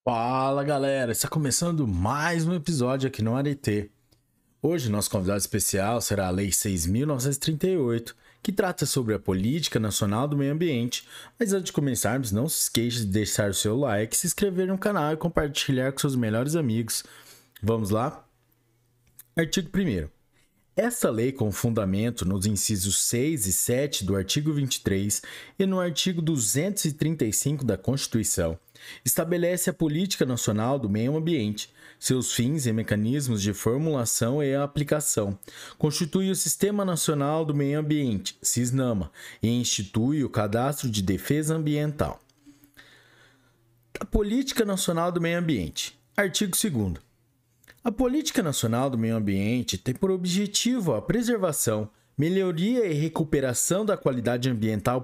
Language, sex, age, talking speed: Portuguese, male, 20-39, 135 wpm